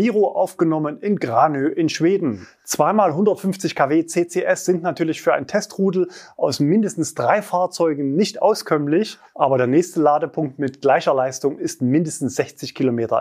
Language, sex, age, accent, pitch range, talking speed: German, male, 30-49, German, 145-200 Hz, 140 wpm